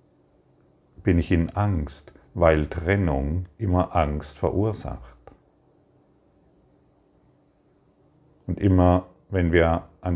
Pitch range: 75-90 Hz